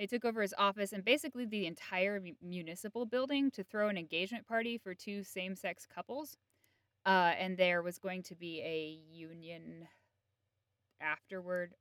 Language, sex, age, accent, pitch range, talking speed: English, female, 10-29, American, 150-205 Hz, 150 wpm